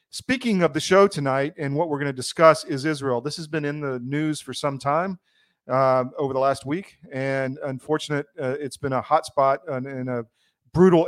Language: English